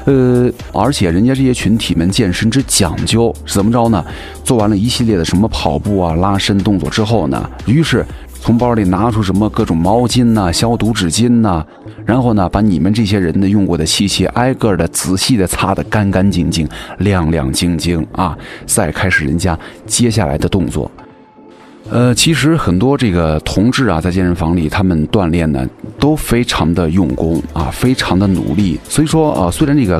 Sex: male